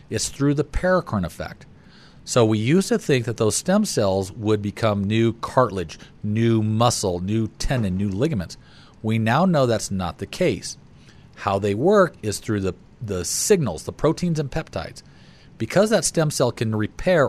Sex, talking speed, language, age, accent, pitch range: male, 170 wpm, English, 40-59, American, 100-140 Hz